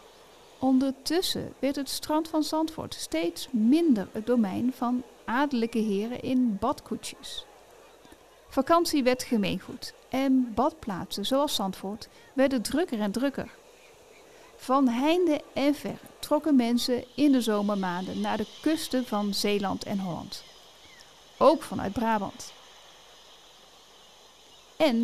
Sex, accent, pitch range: female, Dutch, 225-310 Hz